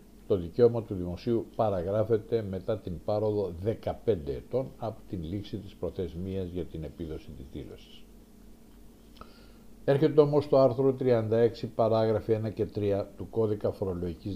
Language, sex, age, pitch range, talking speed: Greek, male, 60-79, 95-110 Hz, 135 wpm